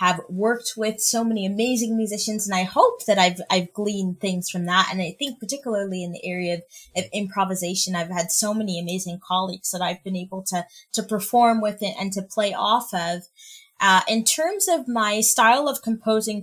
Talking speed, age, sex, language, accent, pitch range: 200 wpm, 20-39, female, English, American, 190-225 Hz